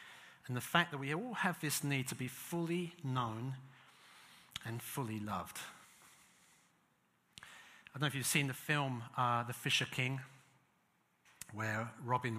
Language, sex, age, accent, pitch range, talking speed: English, male, 50-69, British, 130-160 Hz, 145 wpm